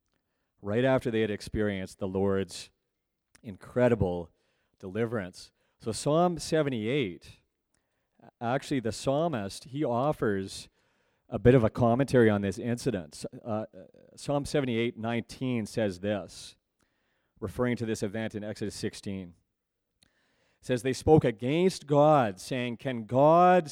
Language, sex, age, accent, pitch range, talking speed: English, male, 40-59, American, 105-130 Hz, 120 wpm